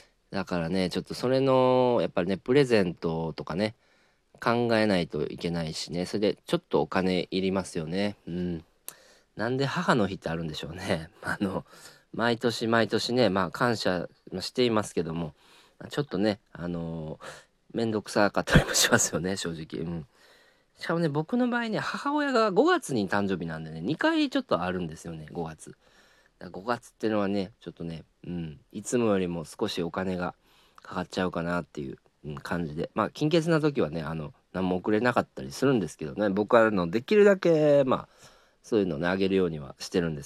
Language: Japanese